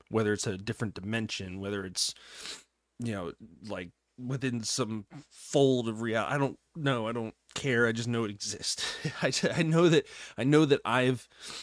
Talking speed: 175 wpm